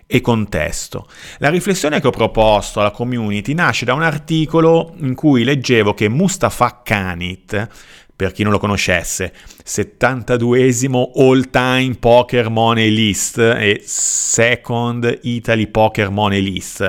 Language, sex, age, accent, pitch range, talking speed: Italian, male, 30-49, native, 105-150 Hz, 125 wpm